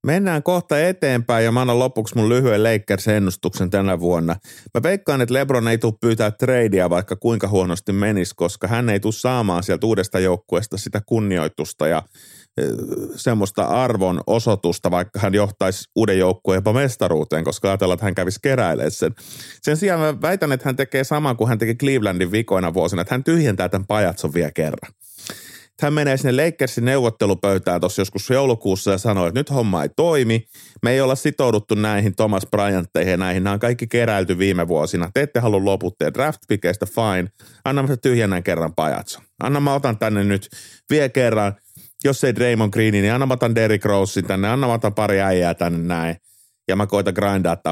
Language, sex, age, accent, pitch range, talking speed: Finnish, male, 30-49, native, 95-120 Hz, 175 wpm